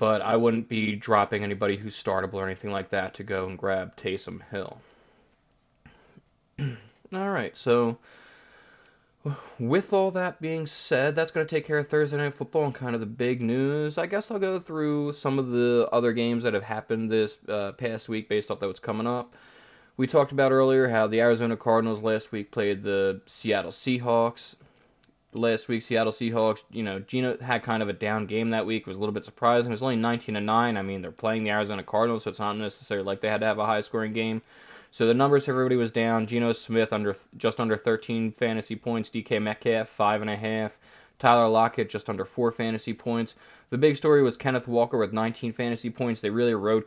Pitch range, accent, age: 110-125 Hz, American, 20-39